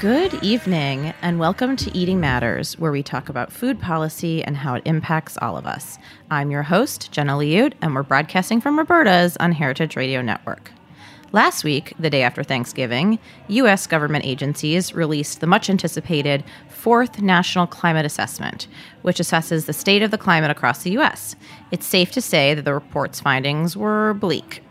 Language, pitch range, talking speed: English, 150-190 Hz, 170 wpm